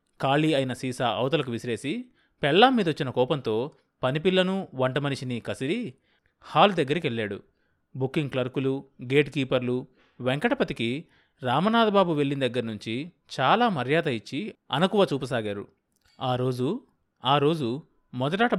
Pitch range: 125-160 Hz